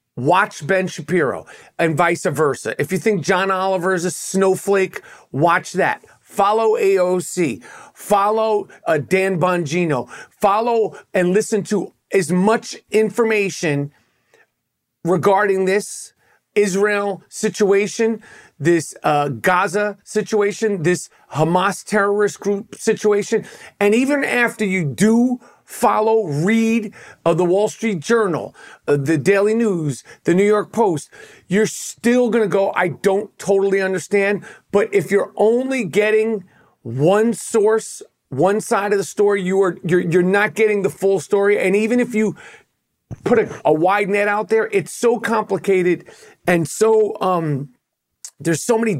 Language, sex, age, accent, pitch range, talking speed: English, male, 40-59, American, 180-215 Hz, 135 wpm